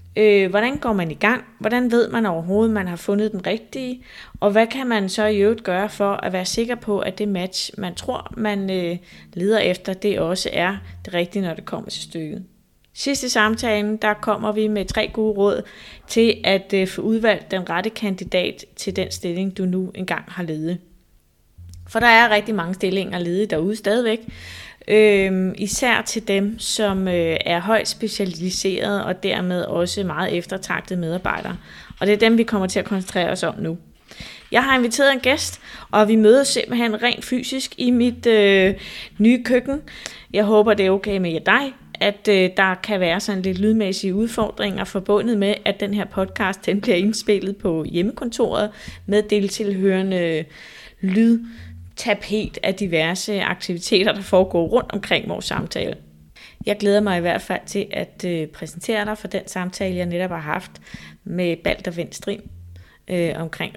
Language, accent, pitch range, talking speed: Danish, native, 180-215 Hz, 175 wpm